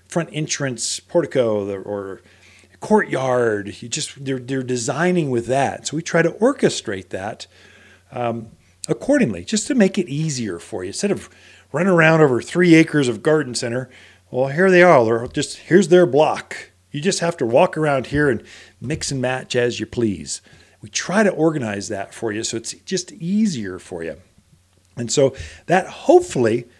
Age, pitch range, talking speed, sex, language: 40-59, 110-170 Hz, 170 wpm, male, English